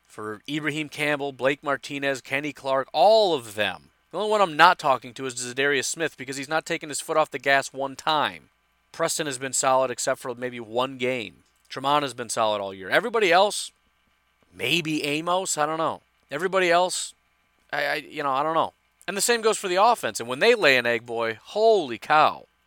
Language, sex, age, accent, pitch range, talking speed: English, male, 30-49, American, 120-155 Hz, 205 wpm